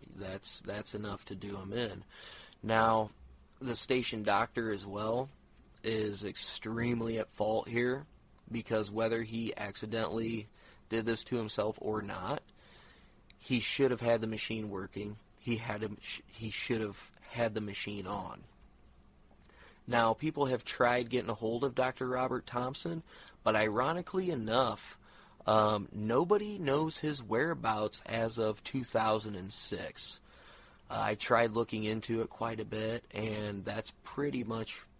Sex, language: male, English